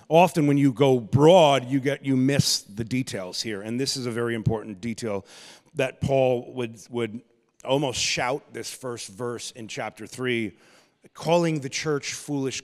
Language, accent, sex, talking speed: English, American, male, 165 wpm